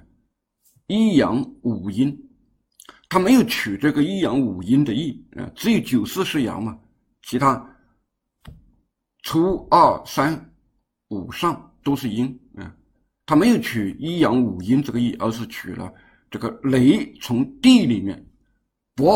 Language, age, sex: Chinese, 60-79, male